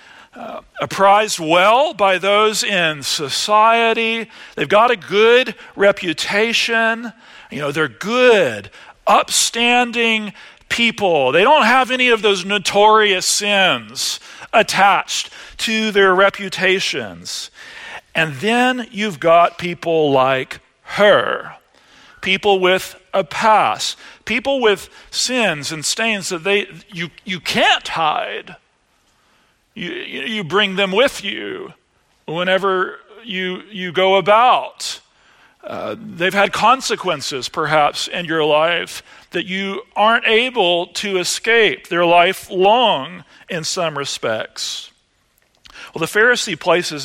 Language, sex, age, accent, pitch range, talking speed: English, male, 50-69, American, 170-220 Hz, 110 wpm